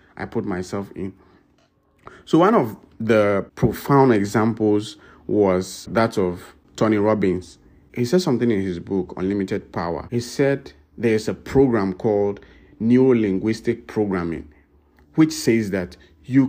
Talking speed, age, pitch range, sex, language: 130 wpm, 50-69, 95-135 Hz, male, English